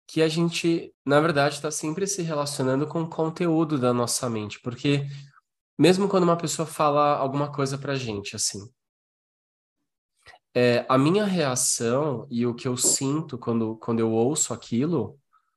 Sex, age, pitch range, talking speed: male, 10-29, 115-155 Hz, 155 wpm